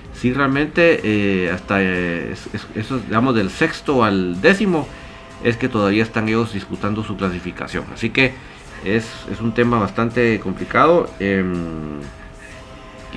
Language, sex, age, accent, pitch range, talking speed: Spanish, male, 50-69, Mexican, 95-120 Hz, 140 wpm